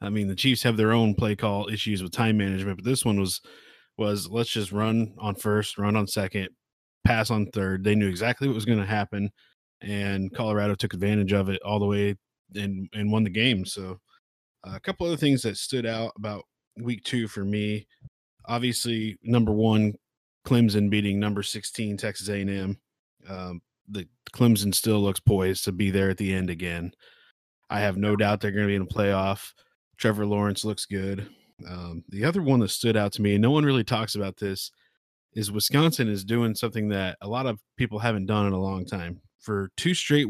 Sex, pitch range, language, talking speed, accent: male, 100-115 Hz, English, 205 wpm, American